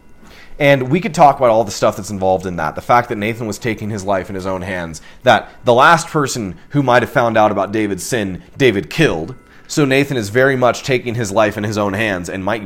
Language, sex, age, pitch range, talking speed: English, male, 30-49, 100-140 Hz, 245 wpm